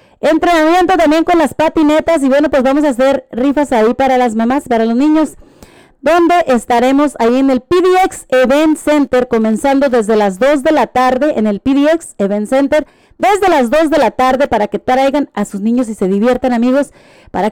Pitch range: 230-300 Hz